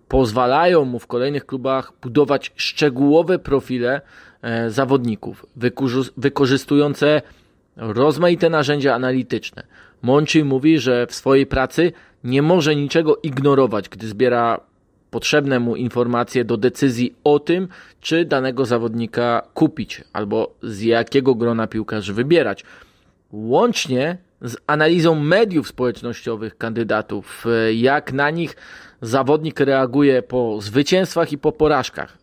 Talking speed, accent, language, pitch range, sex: 110 wpm, native, Polish, 120-145 Hz, male